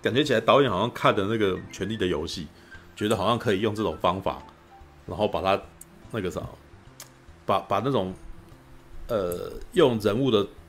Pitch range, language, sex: 85-110 Hz, Chinese, male